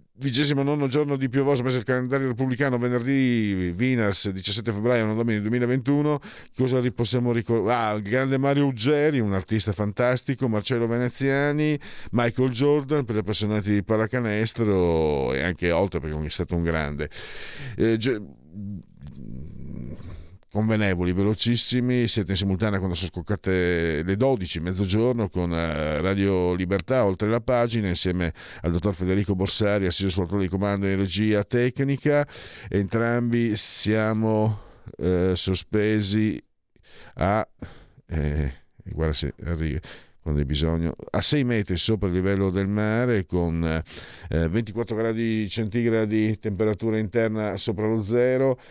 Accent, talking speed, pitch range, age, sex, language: native, 130 wpm, 100-125 Hz, 50-69, male, Italian